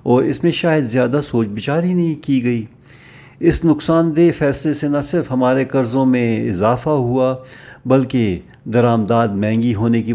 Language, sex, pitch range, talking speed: Urdu, male, 110-130 Hz, 165 wpm